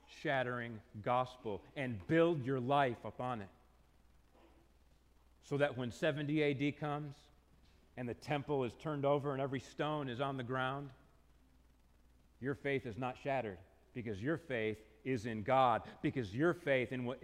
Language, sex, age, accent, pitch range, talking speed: English, male, 40-59, American, 105-160 Hz, 150 wpm